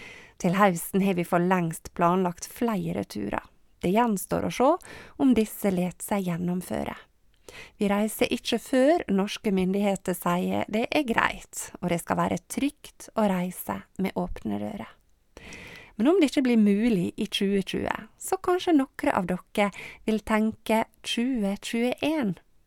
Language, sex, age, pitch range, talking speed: English, female, 30-49, 180-235 Hz, 145 wpm